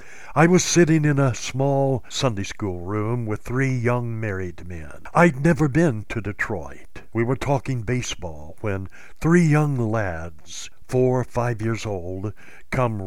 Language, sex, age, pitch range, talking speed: English, male, 60-79, 100-135 Hz, 150 wpm